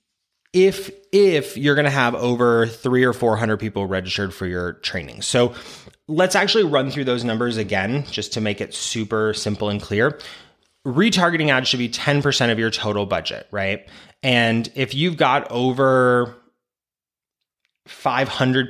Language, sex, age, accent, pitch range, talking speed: English, male, 20-39, American, 110-150 Hz, 150 wpm